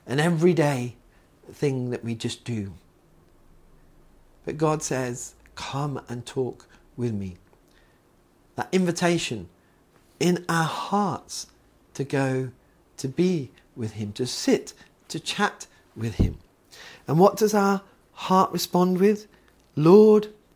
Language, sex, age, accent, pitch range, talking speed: English, male, 40-59, British, 120-165 Hz, 125 wpm